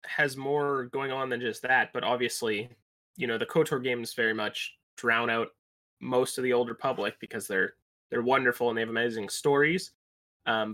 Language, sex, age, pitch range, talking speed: English, male, 20-39, 110-145 Hz, 185 wpm